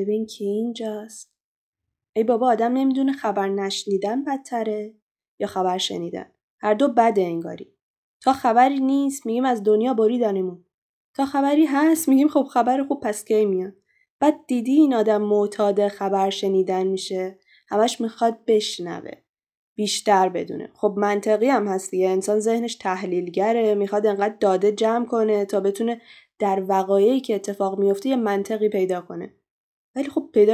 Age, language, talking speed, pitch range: 10-29, Persian, 140 wpm, 200-255 Hz